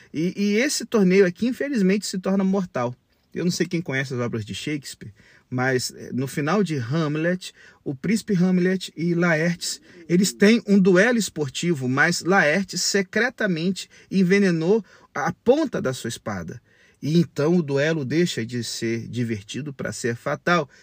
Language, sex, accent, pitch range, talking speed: Portuguese, male, Brazilian, 140-195 Hz, 155 wpm